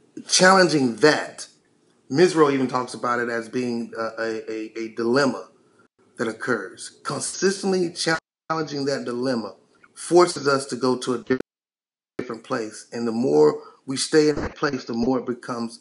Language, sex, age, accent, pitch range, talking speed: English, male, 30-49, American, 115-165 Hz, 150 wpm